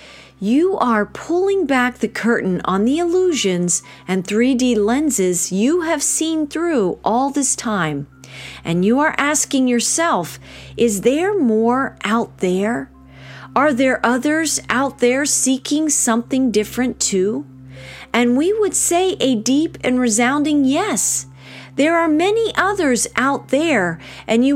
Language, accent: English, American